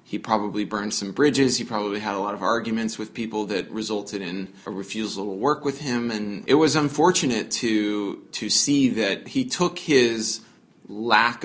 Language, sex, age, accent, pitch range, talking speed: English, male, 20-39, American, 105-120 Hz, 185 wpm